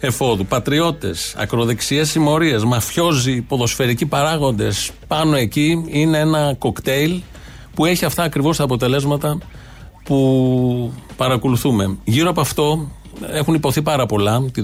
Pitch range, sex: 110-145 Hz, male